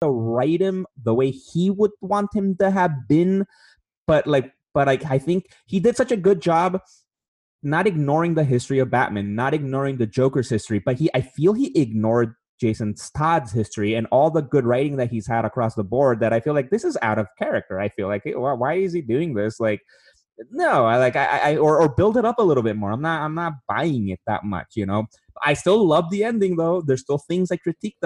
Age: 20-39